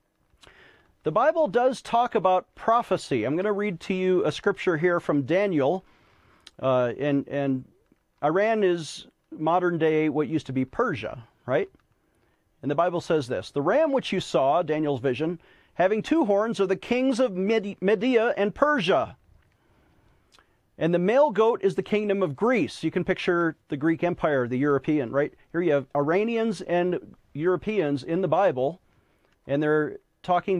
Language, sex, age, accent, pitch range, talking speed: English, male, 40-59, American, 155-215 Hz, 160 wpm